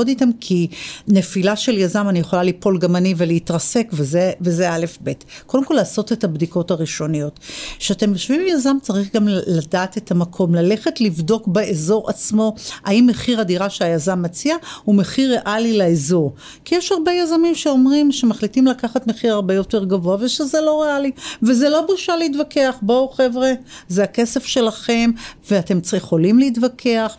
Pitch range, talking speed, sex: 175-235 Hz, 150 wpm, female